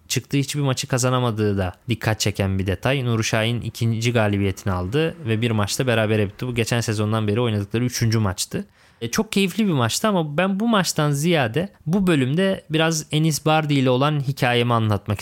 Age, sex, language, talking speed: 20-39, male, Turkish, 175 wpm